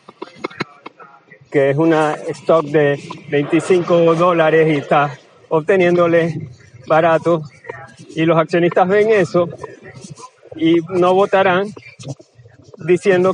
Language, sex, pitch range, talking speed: Spanish, male, 150-180 Hz, 90 wpm